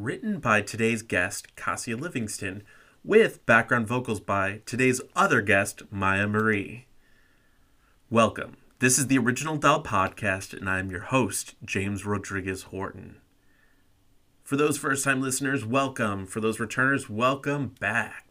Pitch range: 100-130 Hz